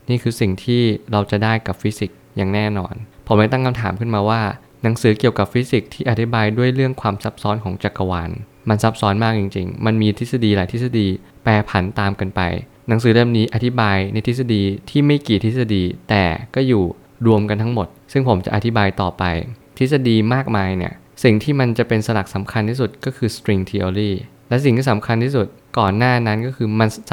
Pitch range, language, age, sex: 100-120 Hz, Thai, 20-39, male